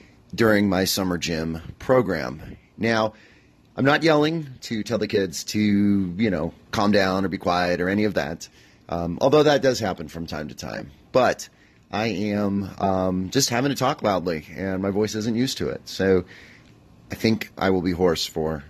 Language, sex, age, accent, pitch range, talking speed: English, male, 30-49, American, 90-115 Hz, 185 wpm